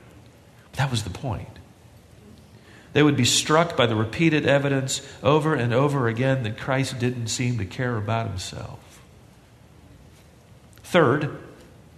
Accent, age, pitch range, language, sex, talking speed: American, 50-69, 120-170 Hz, English, male, 125 wpm